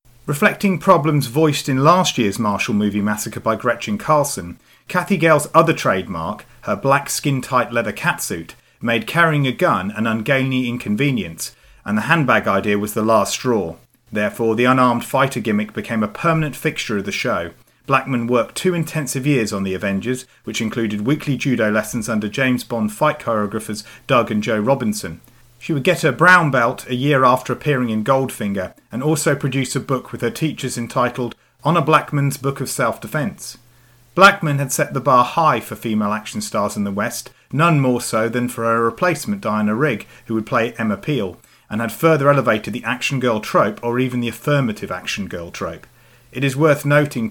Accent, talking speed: British, 180 wpm